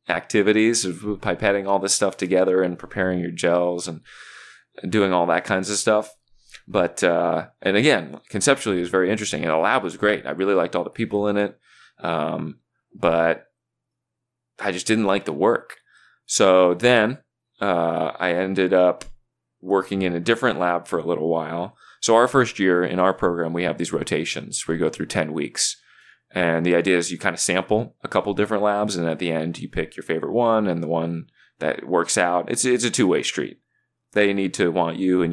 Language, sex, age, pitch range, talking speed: English, male, 20-39, 85-110 Hz, 200 wpm